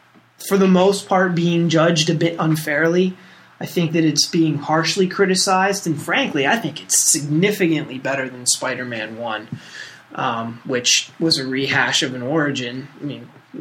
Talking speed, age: 165 wpm, 20-39